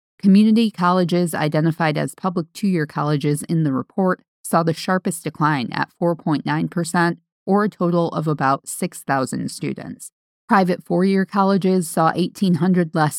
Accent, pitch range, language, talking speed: American, 145-190 Hz, English, 135 wpm